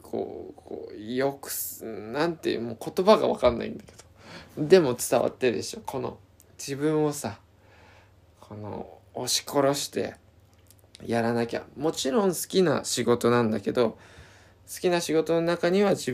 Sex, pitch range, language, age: male, 105-150 Hz, Japanese, 20-39